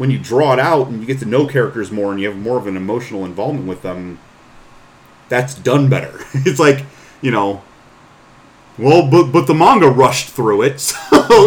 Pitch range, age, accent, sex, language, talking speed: 110-145 Hz, 30-49, American, male, English, 200 wpm